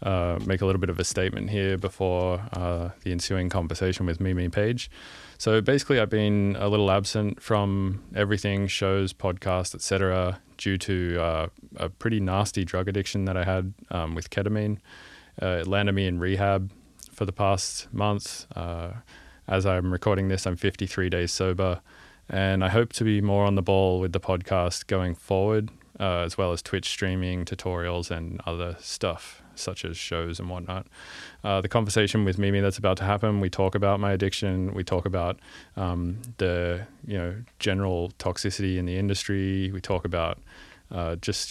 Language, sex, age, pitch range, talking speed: English, male, 20-39, 90-100 Hz, 175 wpm